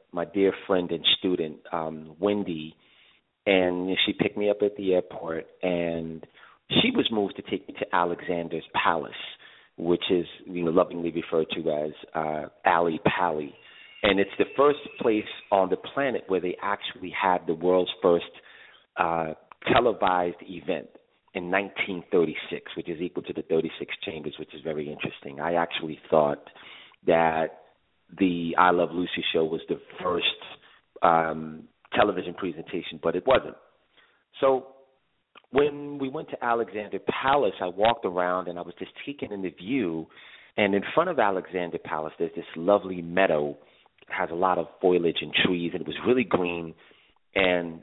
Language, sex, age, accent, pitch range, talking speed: English, male, 40-59, American, 80-95 Hz, 155 wpm